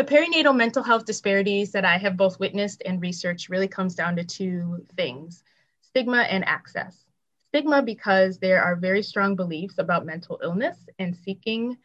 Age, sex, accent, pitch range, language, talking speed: 20-39, female, American, 175-200 Hz, English, 165 wpm